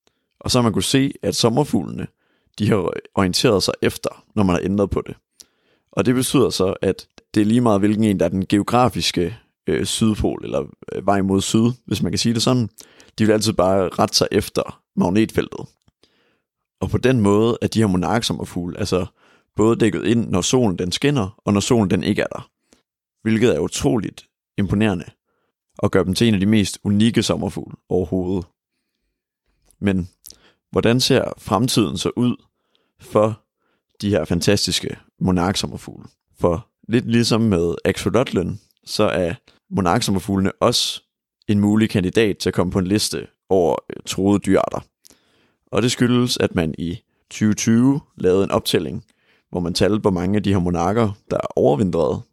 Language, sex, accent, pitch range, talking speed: Danish, male, native, 95-115 Hz, 170 wpm